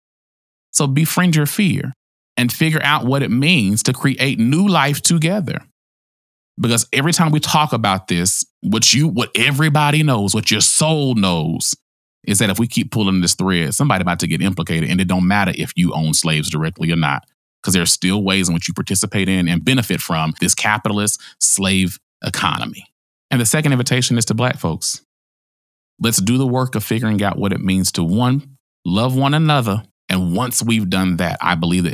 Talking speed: 195 wpm